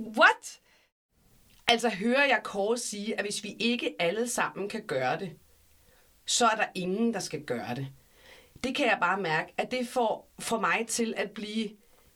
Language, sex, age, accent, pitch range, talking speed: Danish, female, 40-59, native, 190-240 Hz, 175 wpm